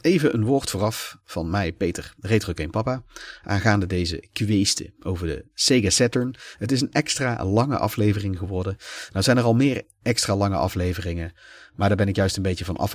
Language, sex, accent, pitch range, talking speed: Dutch, male, Dutch, 90-110 Hz, 190 wpm